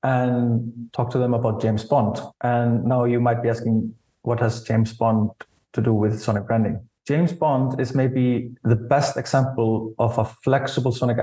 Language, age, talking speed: English, 20-39, 175 wpm